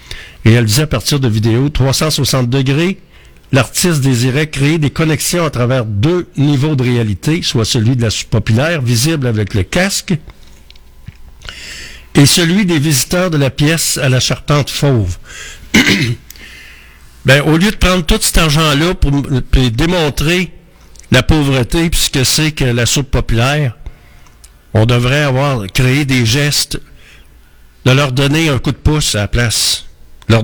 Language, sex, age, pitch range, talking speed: French, male, 60-79, 110-150 Hz, 155 wpm